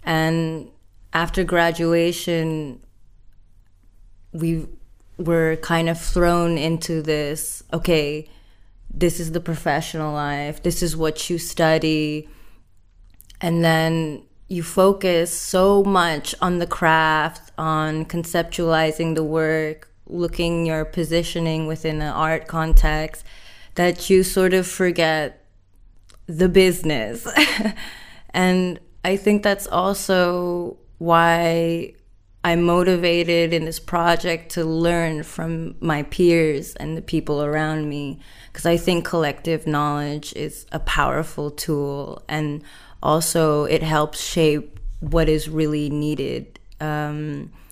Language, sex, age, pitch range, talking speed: English, female, 20-39, 150-170 Hz, 110 wpm